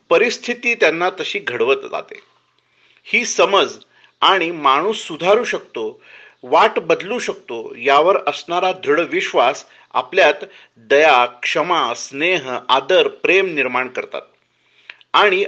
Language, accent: Marathi, native